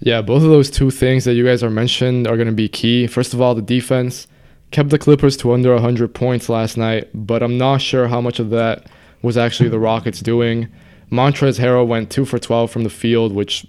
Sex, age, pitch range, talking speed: male, 20-39, 115-125 Hz, 225 wpm